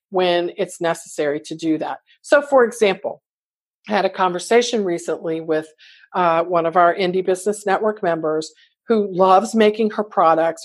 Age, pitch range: 50-69, 170-225 Hz